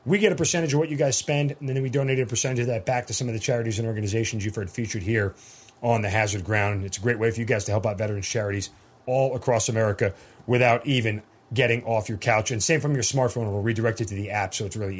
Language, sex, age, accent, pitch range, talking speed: English, male, 40-59, American, 110-150 Hz, 270 wpm